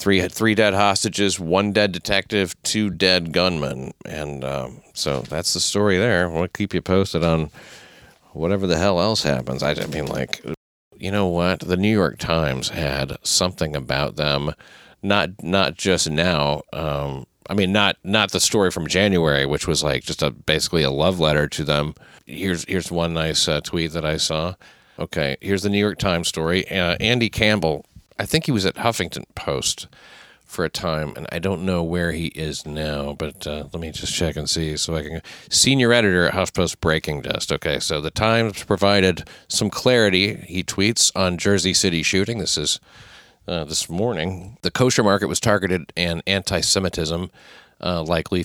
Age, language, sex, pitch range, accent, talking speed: 40-59, English, male, 80-95 Hz, American, 180 wpm